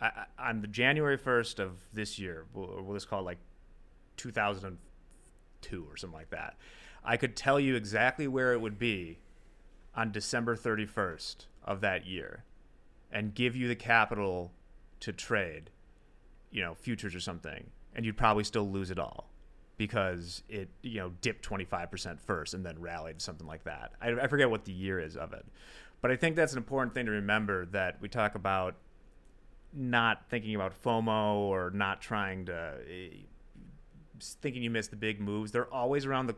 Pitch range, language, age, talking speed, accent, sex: 95-120 Hz, English, 30-49, 175 wpm, American, male